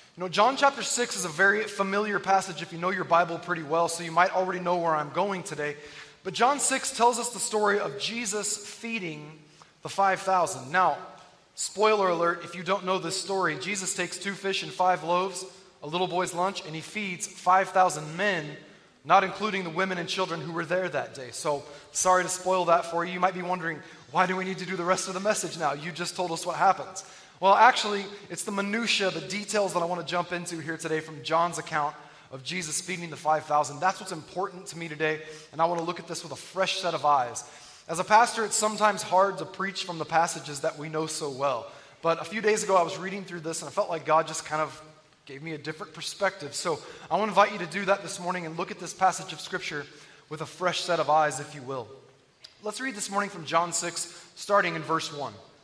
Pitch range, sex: 160-190 Hz, male